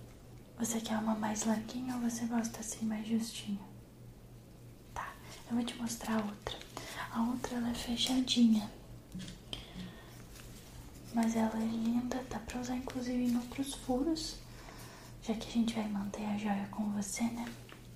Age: 10-29